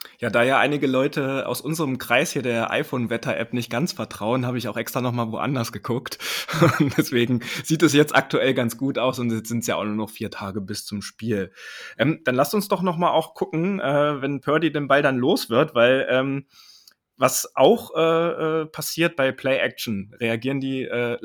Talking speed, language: 195 wpm, German